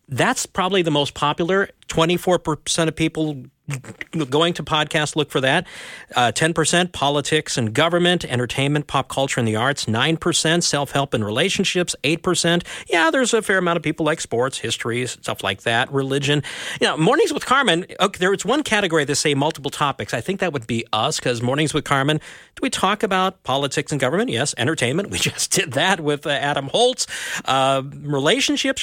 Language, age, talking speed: English, 50-69, 185 wpm